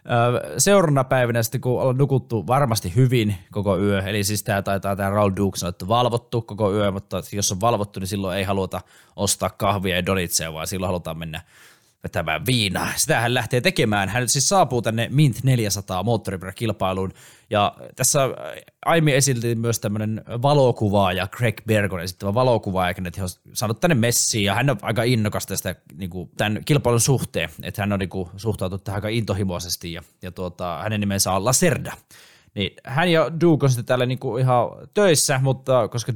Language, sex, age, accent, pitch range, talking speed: Finnish, male, 20-39, native, 100-130 Hz, 170 wpm